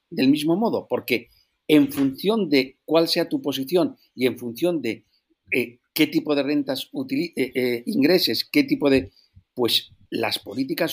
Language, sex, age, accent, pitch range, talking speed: Spanish, male, 50-69, Spanish, 120-175 Hz, 165 wpm